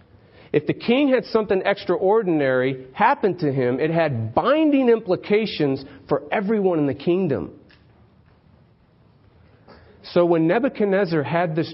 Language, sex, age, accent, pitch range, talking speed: English, male, 40-59, American, 110-160 Hz, 120 wpm